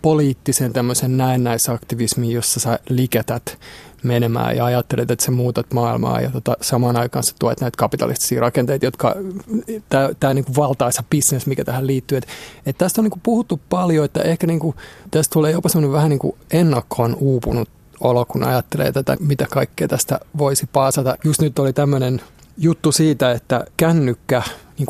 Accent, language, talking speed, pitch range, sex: native, Finnish, 165 wpm, 120-155 Hz, male